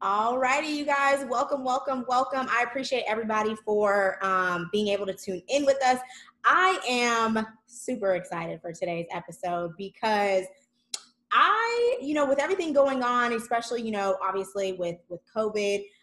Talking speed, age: 150 wpm, 20-39